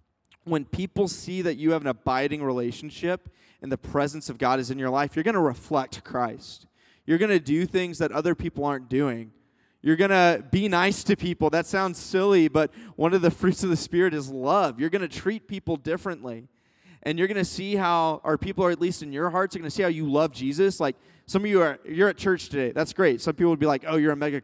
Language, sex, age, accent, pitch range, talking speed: English, male, 20-39, American, 145-185 Hz, 250 wpm